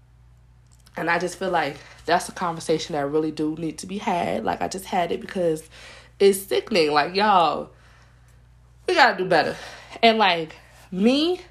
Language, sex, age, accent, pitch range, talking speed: English, female, 20-39, American, 165-215 Hz, 170 wpm